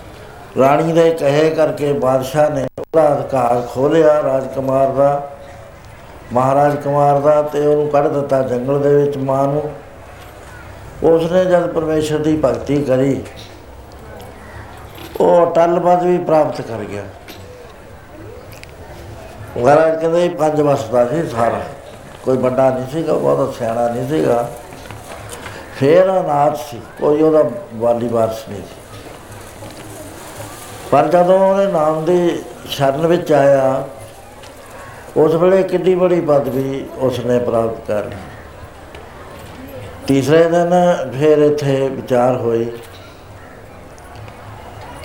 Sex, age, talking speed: male, 60-79, 110 wpm